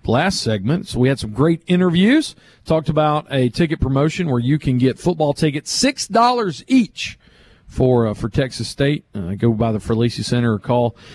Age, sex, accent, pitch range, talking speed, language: 40-59, male, American, 125-190 Hz, 185 wpm, English